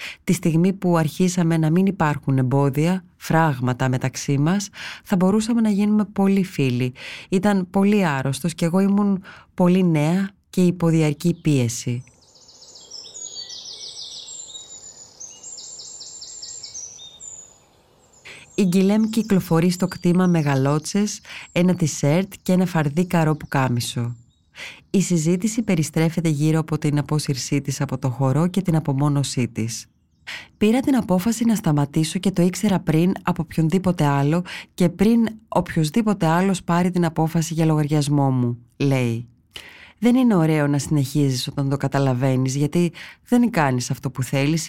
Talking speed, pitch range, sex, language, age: 130 wpm, 140-185 Hz, female, Greek, 30-49